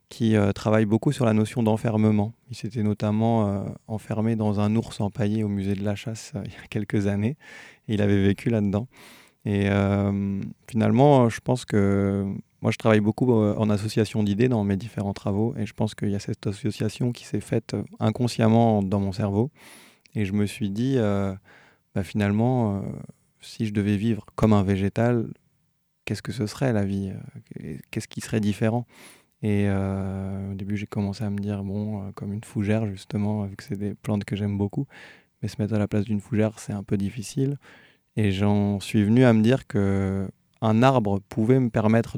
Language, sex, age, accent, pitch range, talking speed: French, male, 20-39, French, 100-115 Hz, 200 wpm